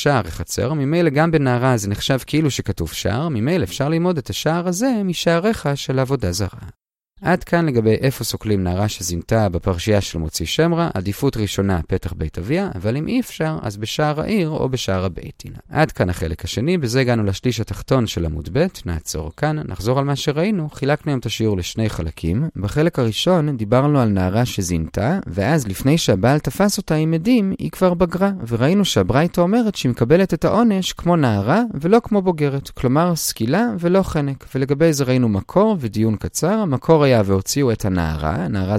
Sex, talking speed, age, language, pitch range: male, 165 wpm, 30-49, Hebrew, 100-165 Hz